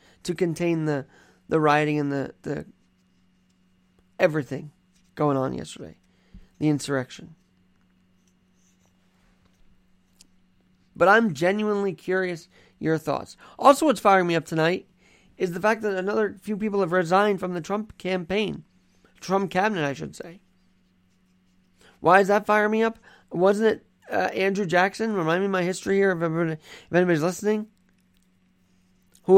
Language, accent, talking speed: English, American, 135 wpm